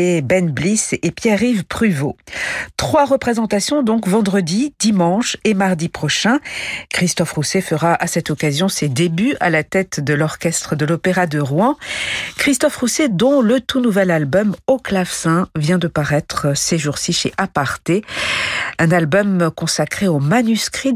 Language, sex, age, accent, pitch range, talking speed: French, female, 50-69, French, 160-215 Hz, 145 wpm